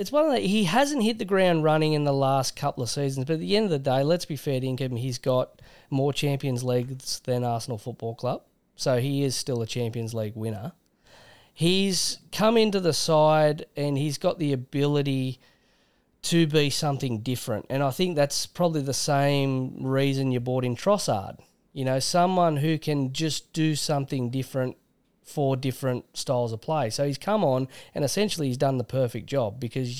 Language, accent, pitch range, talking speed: English, Australian, 120-155 Hz, 195 wpm